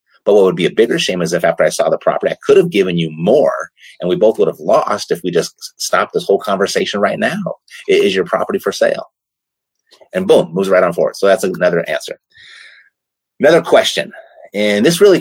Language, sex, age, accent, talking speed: English, male, 30-49, American, 215 wpm